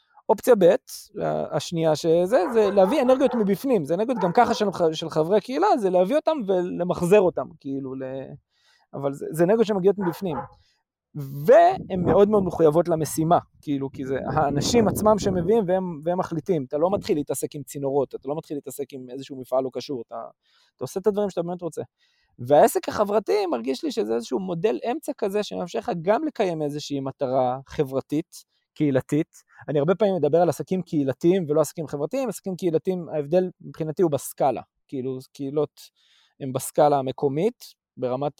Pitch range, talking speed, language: 145-195 Hz, 160 wpm, Hebrew